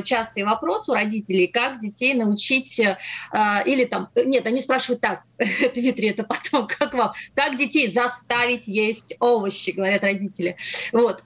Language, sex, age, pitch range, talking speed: Russian, female, 30-49, 215-265 Hz, 145 wpm